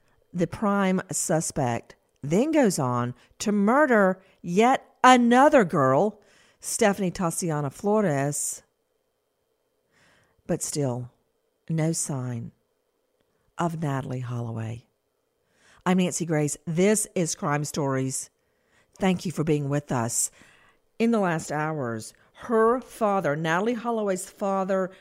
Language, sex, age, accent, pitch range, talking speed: English, female, 50-69, American, 150-215 Hz, 105 wpm